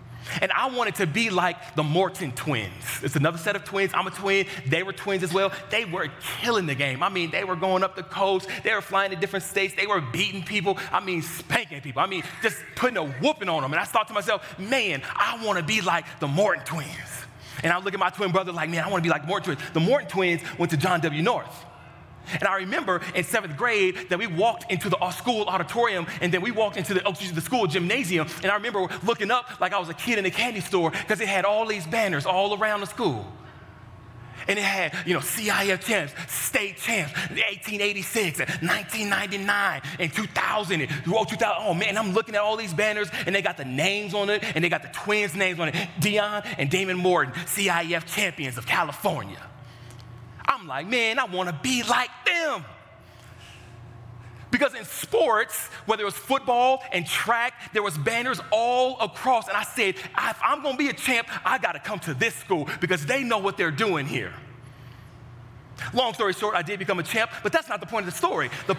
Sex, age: male, 30-49